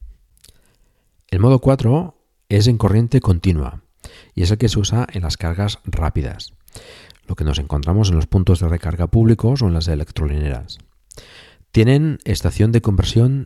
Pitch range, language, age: 80-105 Hz, Spanish, 50-69